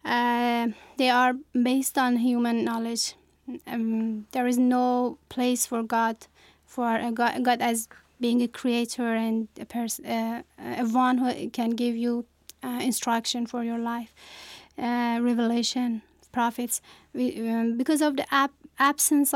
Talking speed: 150 wpm